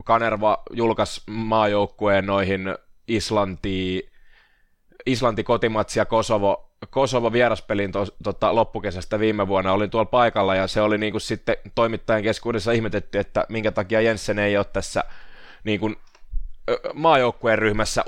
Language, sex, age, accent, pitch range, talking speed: Finnish, male, 20-39, native, 105-130 Hz, 95 wpm